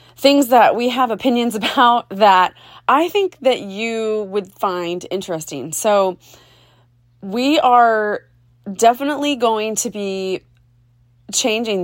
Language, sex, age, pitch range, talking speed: English, female, 30-49, 160-195 Hz, 110 wpm